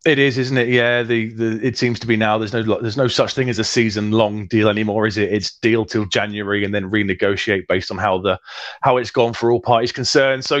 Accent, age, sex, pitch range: British, 30-49, male, 105-120 Hz